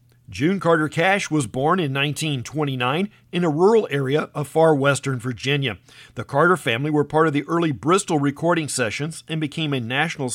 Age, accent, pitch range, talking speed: 50-69, American, 125-165 Hz, 175 wpm